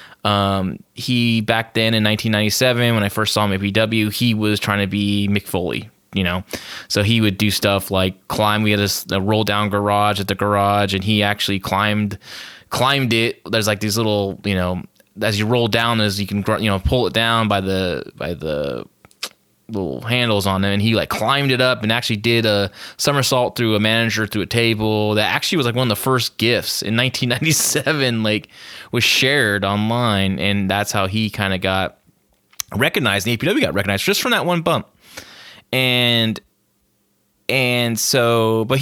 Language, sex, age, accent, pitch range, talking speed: English, male, 20-39, American, 100-120 Hz, 190 wpm